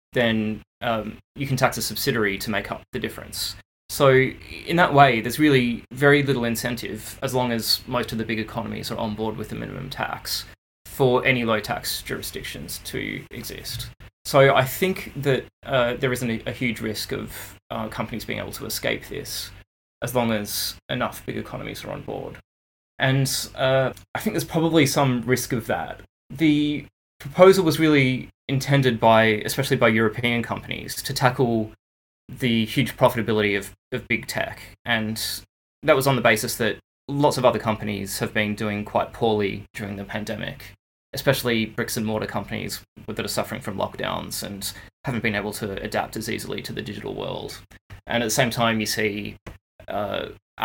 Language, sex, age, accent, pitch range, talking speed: English, male, 20-39, Australian, 105-130 Hz, 175 wpm